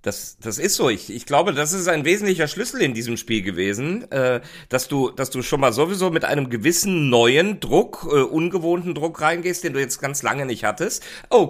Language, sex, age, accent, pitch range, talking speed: German, male, 40-59, German, 120-160 Hz, 215 wpm